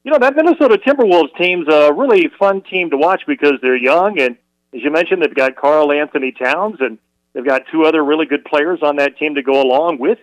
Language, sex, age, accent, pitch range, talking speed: English, male, 40-59, American, 135-180 Hz, 230 wpm